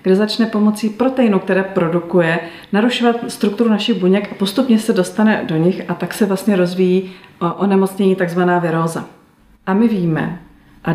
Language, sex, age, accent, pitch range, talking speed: Czech, female, 40-59, native, 175-215 Hz, 160 wpm